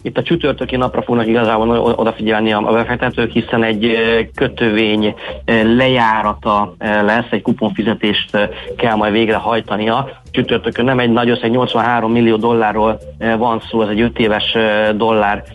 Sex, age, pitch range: male, 40-59, 110-125 Hz